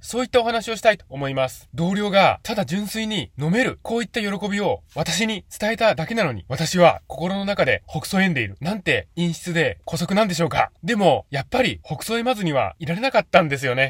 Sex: male